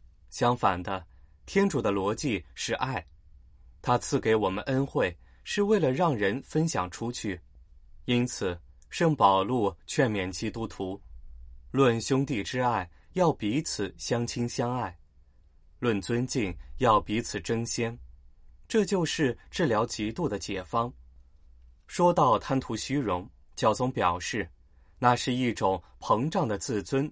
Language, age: Chinese, 20-39